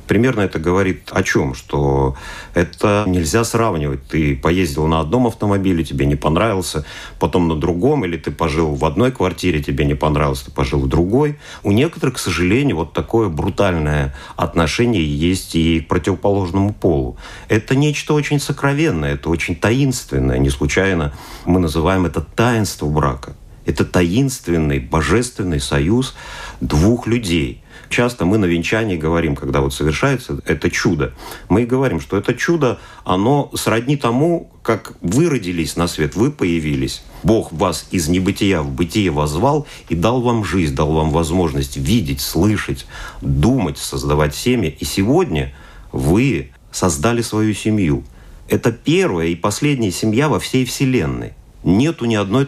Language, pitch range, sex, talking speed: Russian, 75-115 Hz, male, 145 wpm